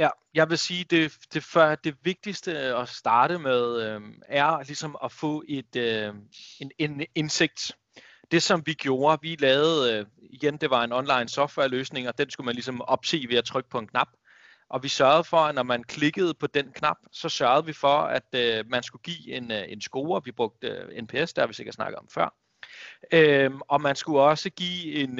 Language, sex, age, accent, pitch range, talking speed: Danish, male, 30-49, native, 125-160 Hz, 210 wpm